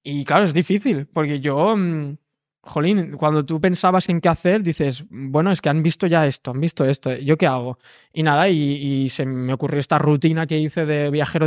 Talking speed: 210 wpm